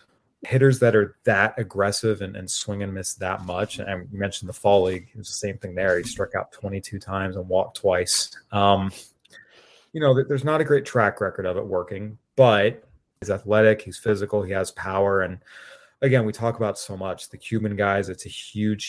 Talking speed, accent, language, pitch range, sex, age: 205 wpm, American, English, 95-110 Hz, male, 30-49